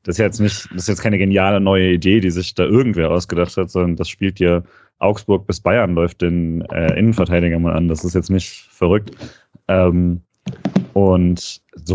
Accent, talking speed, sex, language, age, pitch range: German, 180 wpm, male, German, 30-49, 90-105 Hz